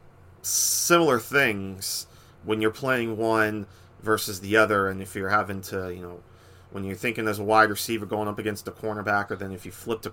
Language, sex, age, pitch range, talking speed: English, male, 30-49, 95-115 Hz, 200 wpm